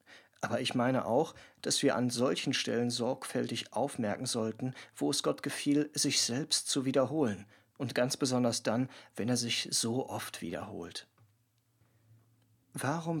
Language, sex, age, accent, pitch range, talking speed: German, male, 40-59, German, 110-130 Hz, 140 wpm